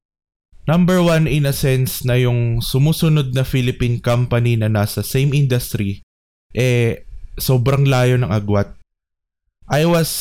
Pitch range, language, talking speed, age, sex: 105-130 Hz, Filipino, 130 wpm, 20-39, male